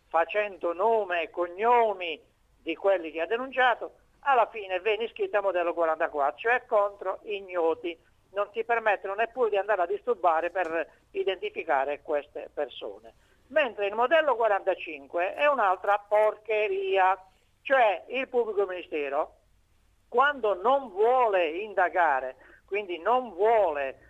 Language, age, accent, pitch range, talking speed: Italian, 60-79, native, 170-240 Hz, 120 wpm